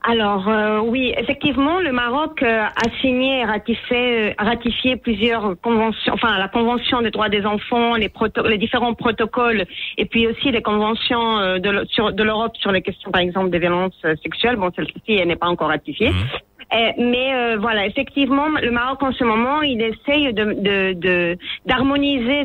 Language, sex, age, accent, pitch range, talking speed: French, female, 40-59, French, 205-250 Hz, 175 wpm